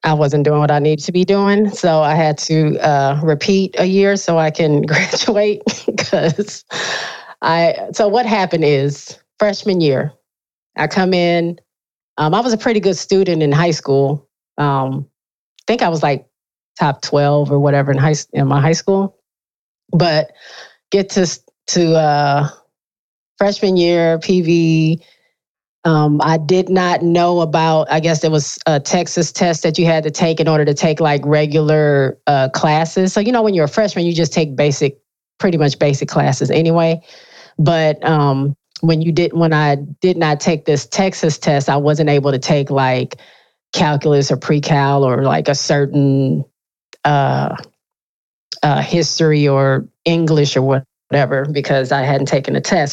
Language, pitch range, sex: English, 145-175 Hz, female